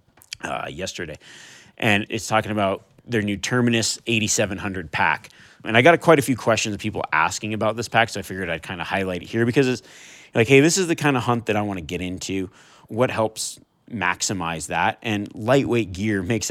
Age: 30-49